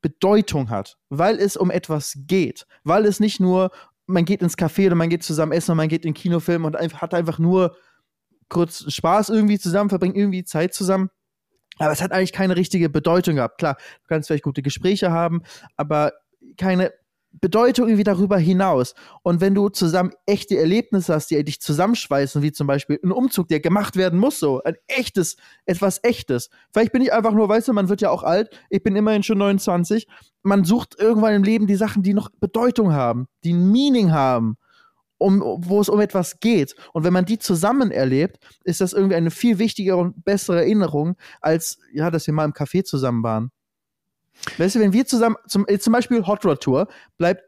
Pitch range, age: 155-205 Hz, 20-39